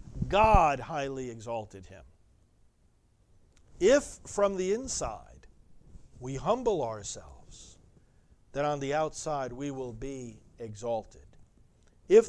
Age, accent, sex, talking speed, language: 50-69, American, male, 100 wpm, English